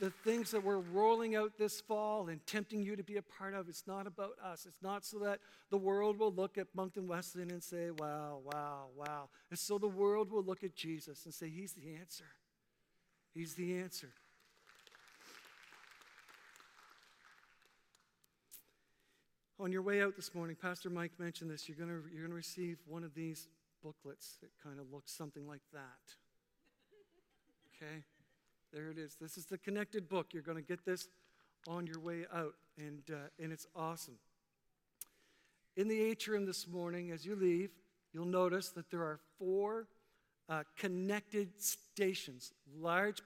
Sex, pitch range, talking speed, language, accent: male, 160-195 Hz, 165 wpm, English, American